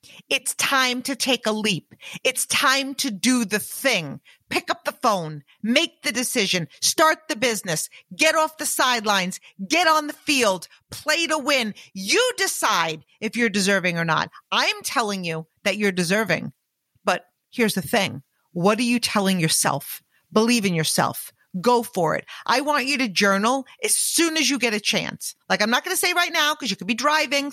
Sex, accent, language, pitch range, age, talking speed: female, American, English, 200-285 Hz, 40-59, 185 wpm